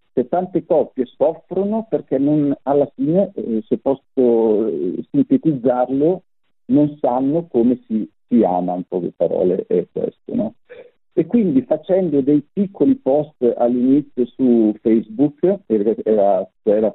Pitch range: 105-145 Hz